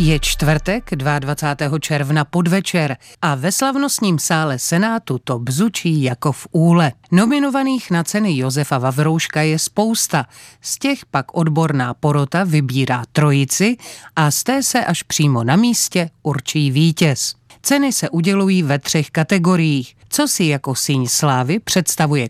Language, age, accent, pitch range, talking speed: Czech, 40-59, native, 145-190 Hz, 135 wpm